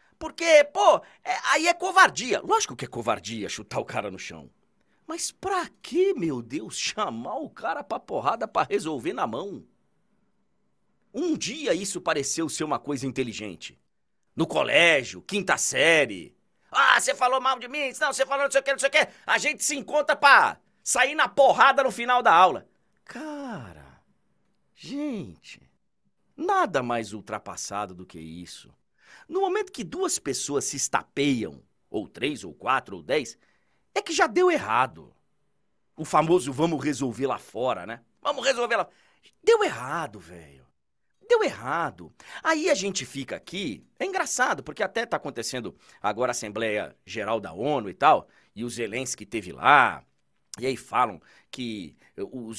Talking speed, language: 160 wpm, Portuguese